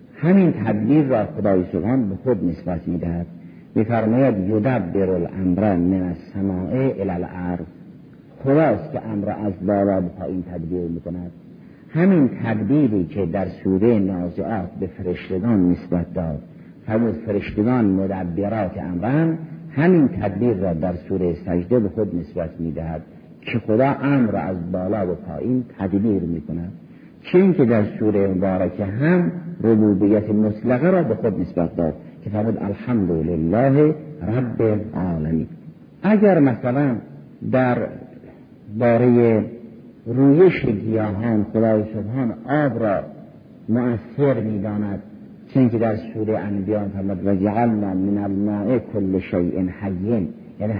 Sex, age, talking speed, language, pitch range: male, 50-69, 115 wpm, Persian, 90-115 Hz